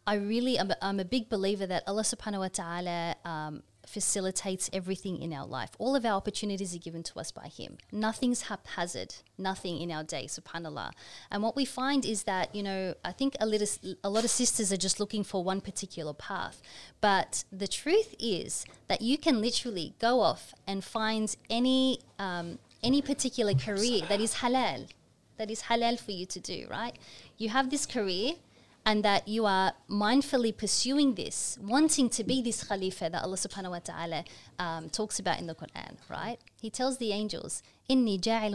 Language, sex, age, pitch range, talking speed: English, female, 20-39, 190-235 Hz, 185 wpm